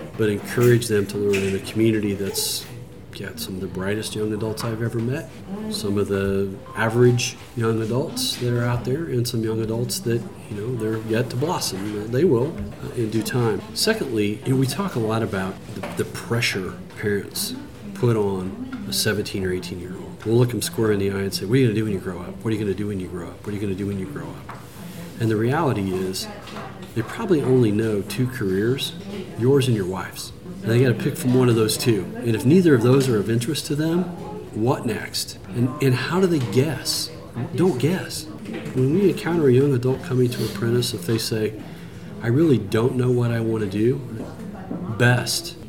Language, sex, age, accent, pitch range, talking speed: English, male, 40-59, American, 100-130 Hz, 215 wpm